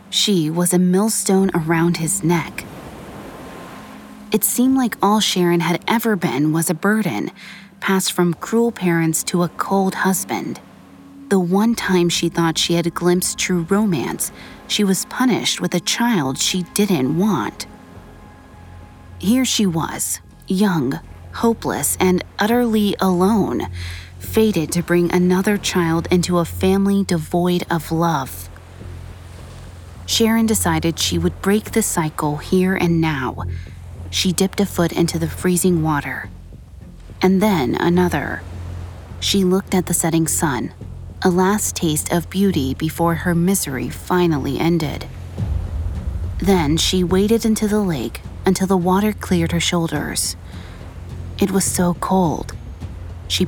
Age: 30-49